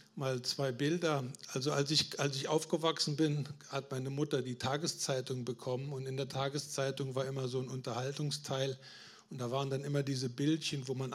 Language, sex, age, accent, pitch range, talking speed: German, male, 50-69, German, 135-165 Hz, 185 wpm